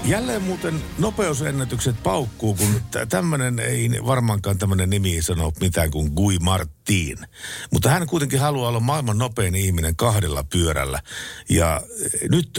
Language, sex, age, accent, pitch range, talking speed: Finnish, male, 60-79, native, 85-120 Hz, 130 wpm